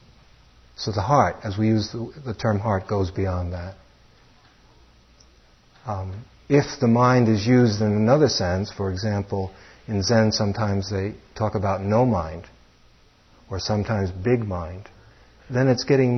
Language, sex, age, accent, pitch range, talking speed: English, male, 60-79, American, 95-115 Hz, 140 wpm